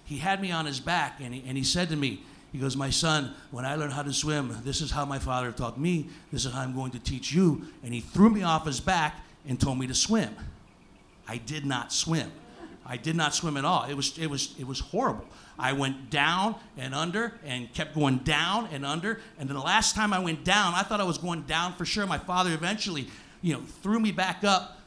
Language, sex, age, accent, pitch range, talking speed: English, male, 50-69, American, 140-185 Hz, 250 wpm